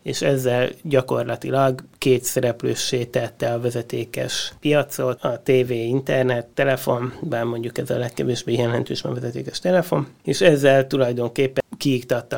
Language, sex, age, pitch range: Hungarian, male, 30-49, 120-135 Hz